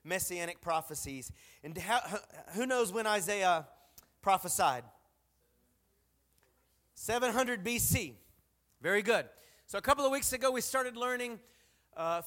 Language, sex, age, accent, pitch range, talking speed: English, male, 30-49, American, 195-260 Hz, 110 wpm